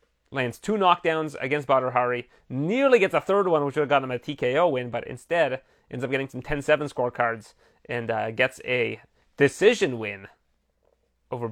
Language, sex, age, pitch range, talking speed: English, male, 30-49, 110-140 Hz, 175 wpm